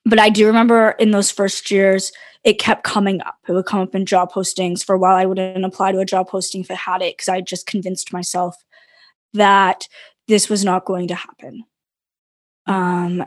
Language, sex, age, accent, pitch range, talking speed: English, female, 20-39, American, 195-230 Hz, 210 wpm